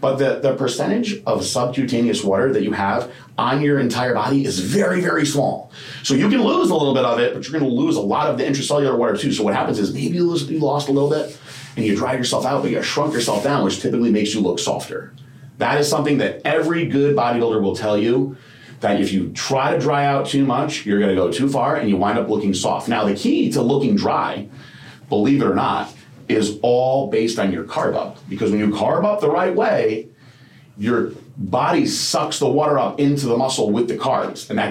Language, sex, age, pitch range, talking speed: English, male, 30-49, 110-140 Hz, 235 wpm